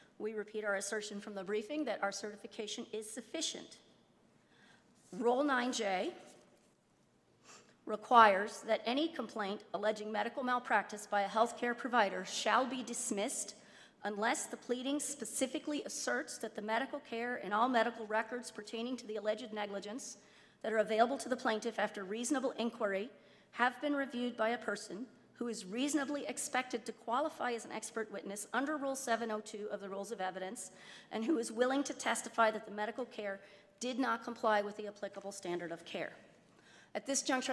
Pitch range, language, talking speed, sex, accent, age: 210-245 Hz, English, 160 wpm, female, American, 40-59